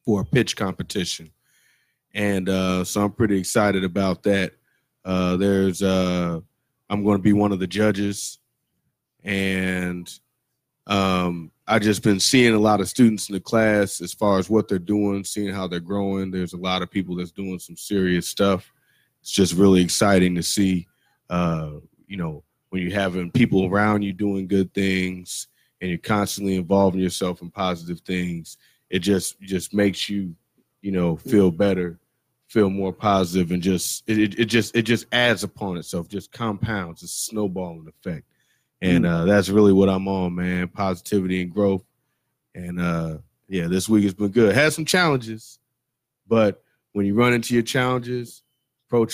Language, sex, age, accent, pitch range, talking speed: English, male, 20-39, American, 90-110 Hz, 170 wpm